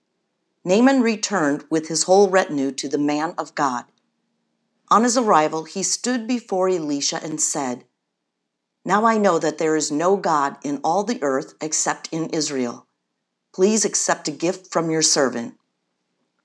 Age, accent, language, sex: 50-69, American, English, female